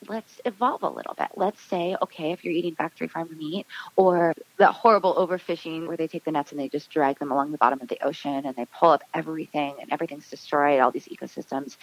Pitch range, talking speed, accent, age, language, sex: 165-195 Hz, 225 wpm, American, 20-39, English, female